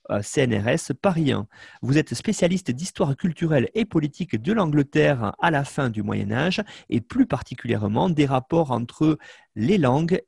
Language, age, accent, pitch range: French, 40-59, French, 125-175 Hz